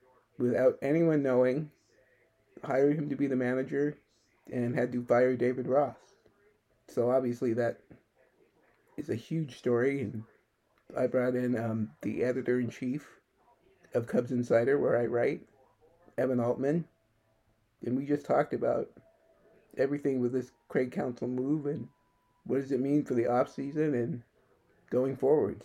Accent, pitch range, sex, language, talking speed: American, 115-135 Hz, male, English, 140 wpm